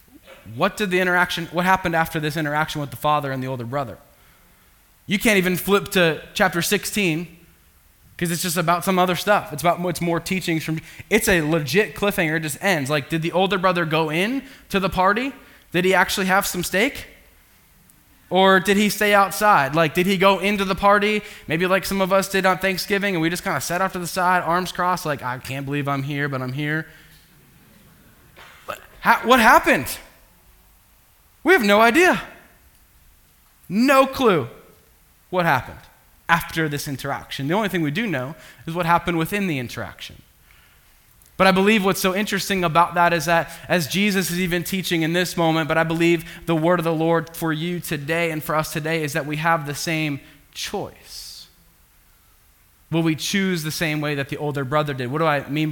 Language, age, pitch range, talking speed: English, 10-29, 155-190 Hz, 195 wpm